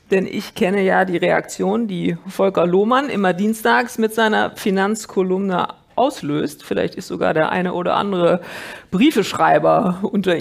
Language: German